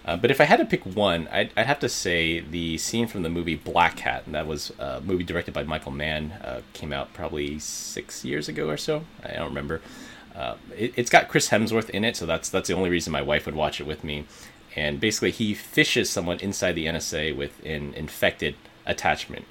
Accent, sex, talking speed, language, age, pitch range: American, male, 230 wpm, English, 30-49, 75-100 Hz